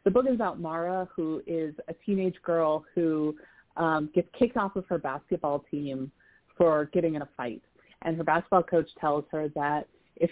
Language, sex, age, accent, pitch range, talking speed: English, female, 30-49, American, 160-220 Hz, 185 wpm